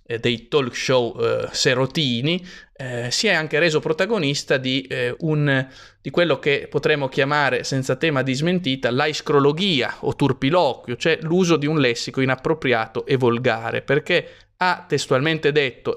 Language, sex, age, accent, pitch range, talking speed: Italian, male, 20-39, native, 120-145 Hz, 145 wpm